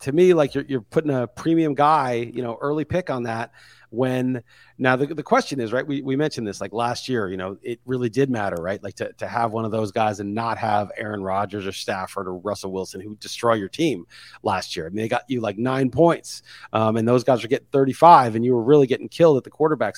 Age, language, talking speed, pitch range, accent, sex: 40-59, English, 250 wpm, 120-155 Hz, American, male